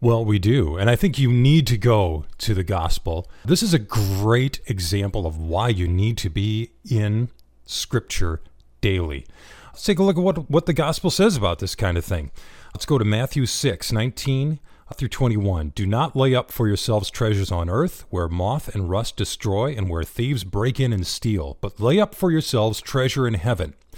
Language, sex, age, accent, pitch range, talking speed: English, male, 40-59, American, 100-140 Hz, 195 wpm